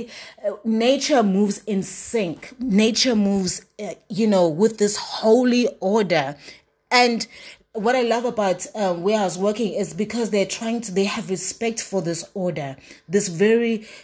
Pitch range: 185-225 Hz